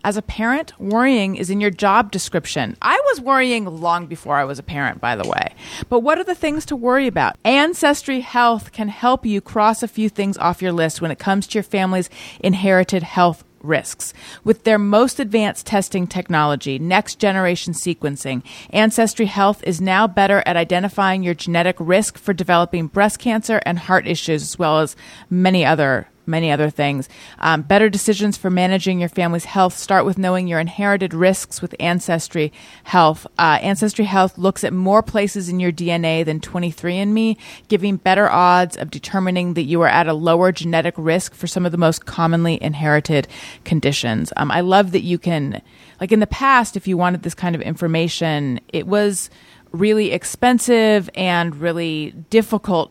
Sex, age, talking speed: female, 30-49, 180 wpm